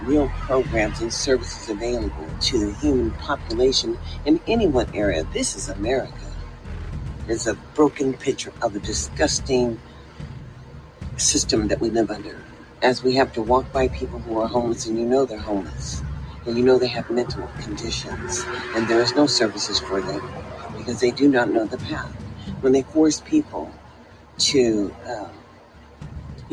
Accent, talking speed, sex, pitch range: American, 160 wpm, female, 95-130 Hz